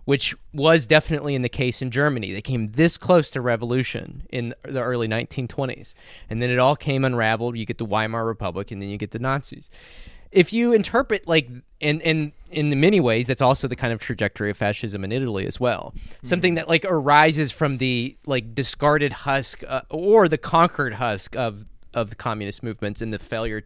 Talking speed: 200 wpm